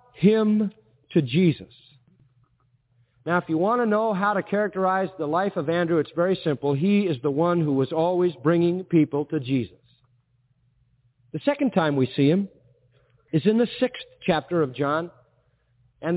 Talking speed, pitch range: 165 wpm, 130-195 Hz